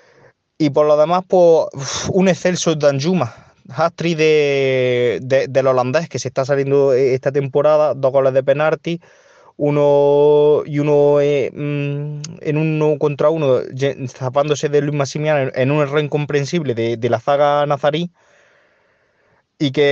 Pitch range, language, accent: 135-155 Hz, Spanish, Spanish